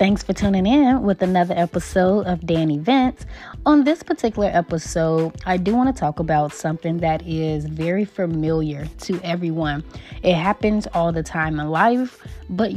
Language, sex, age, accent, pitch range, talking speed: English, female, 20-39, American, 165-215 Hz, 165 wpm